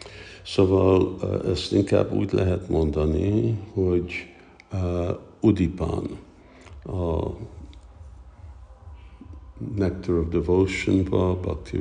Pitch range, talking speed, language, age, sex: 80-95 Hz, 70 wpm, Hungarian, 60-79, male